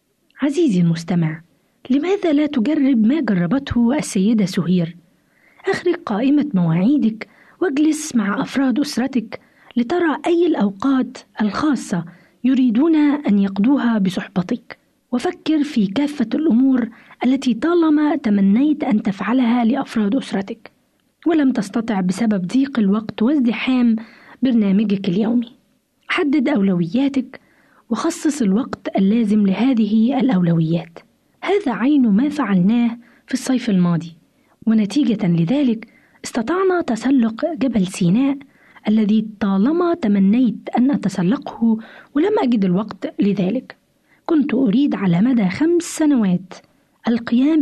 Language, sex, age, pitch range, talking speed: Arabic, female, 20-39, 210-275 Hz, 100 wpm